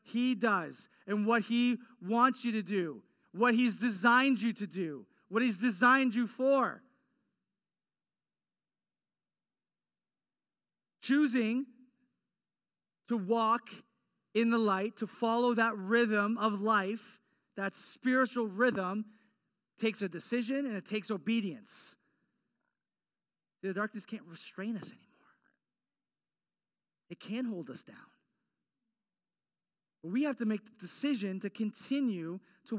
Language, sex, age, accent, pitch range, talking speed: English, male, 40-59, American, 210-255 Hz, 115 wpm